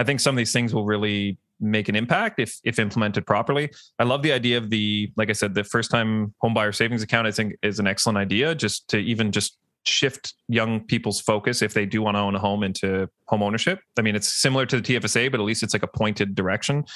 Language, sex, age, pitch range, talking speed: English, male, 20-39, 105-120 Hz, 250 wpm